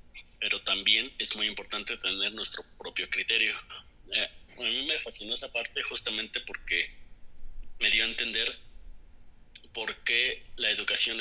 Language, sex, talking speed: Spanish, male, 140 wpm